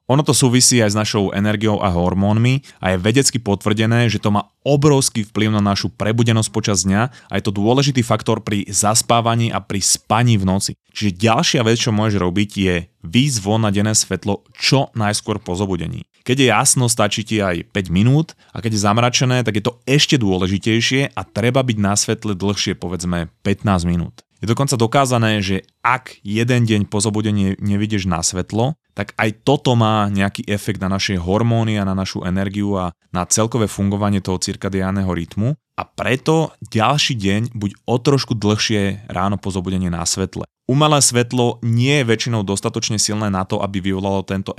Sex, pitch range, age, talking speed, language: male, 100-115 Hz, 30-49, 180 wpm, Slovak